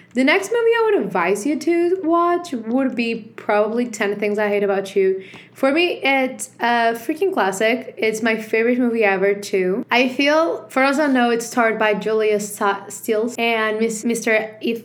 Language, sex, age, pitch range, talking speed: English, female, 20-39, 205-255 Hz, 185 wpm